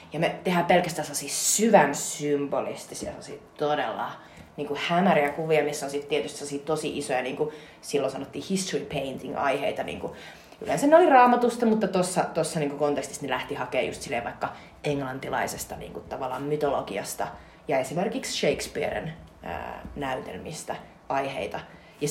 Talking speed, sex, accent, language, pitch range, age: 120 wpm, female, native, Finnish, 150-220 Hz, 30-49